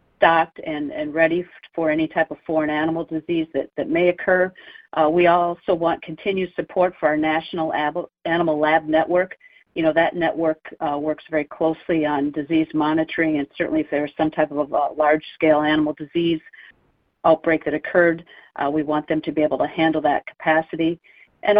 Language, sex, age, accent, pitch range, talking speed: English, female, 50-69, American, 155-195 Hz, 180 wpm